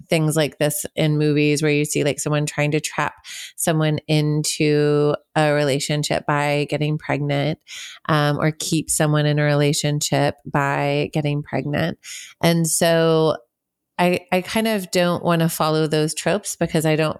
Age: 30-49